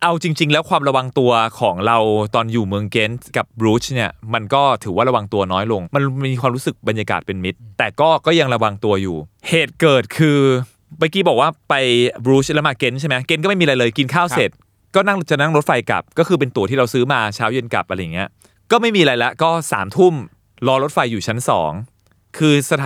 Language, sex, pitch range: Thai, male, 110-150 Hz